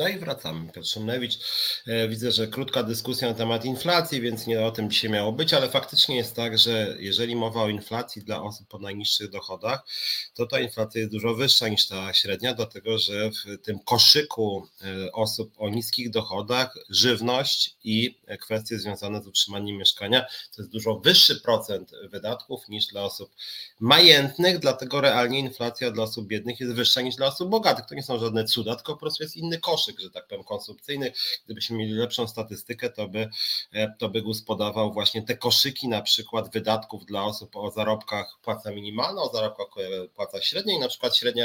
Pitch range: 105-125 Hz